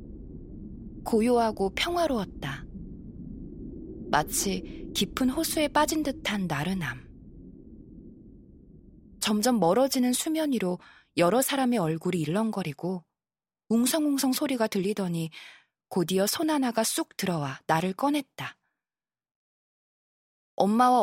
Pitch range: 175-260 Hz